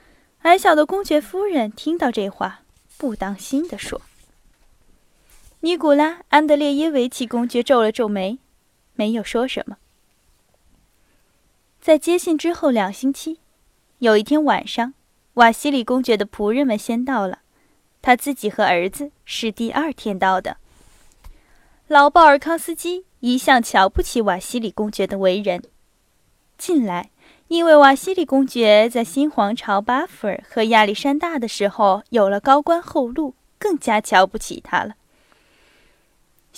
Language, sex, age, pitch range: Chinese, female, 10-29, 215-300 Hz